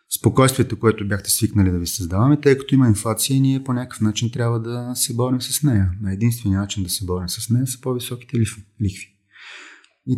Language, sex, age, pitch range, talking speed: Bulgarian, male, 30-49, 105-135 Hz, 195 wpm